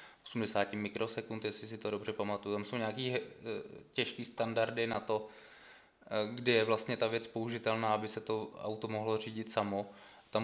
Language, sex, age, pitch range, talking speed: Czech, male, 20-39, 105-120 Hz, 160 wpm